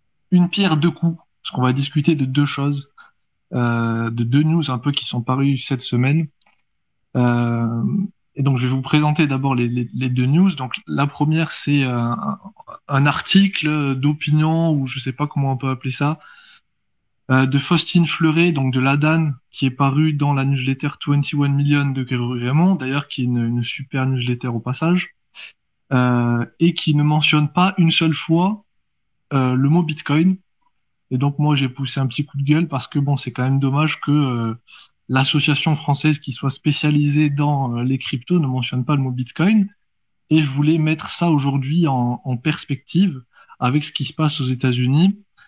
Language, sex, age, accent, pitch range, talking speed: French, male, 20-39, French, 130-155 Hz, 185 wpm